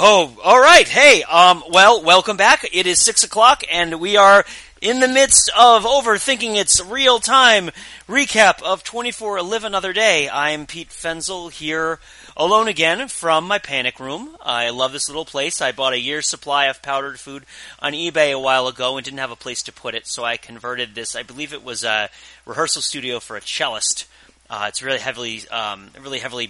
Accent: American